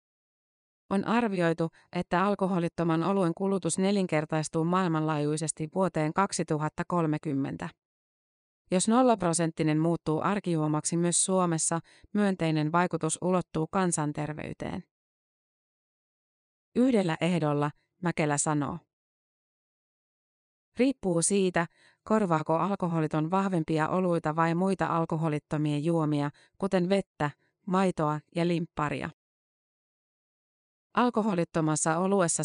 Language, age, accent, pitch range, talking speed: Finnish, 30-49, native, 155-185 Hz, 75 wpm